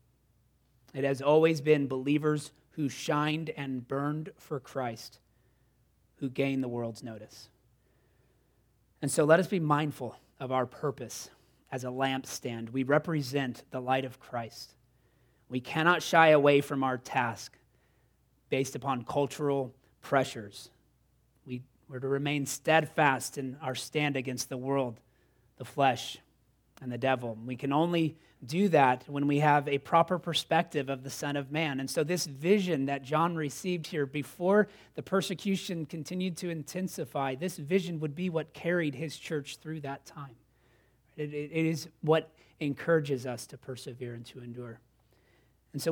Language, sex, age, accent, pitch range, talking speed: English, male, 30-49, American, 125-155 Hz, 150 wpm